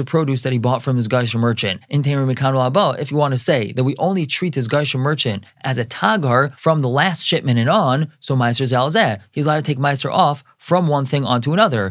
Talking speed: 230 wpm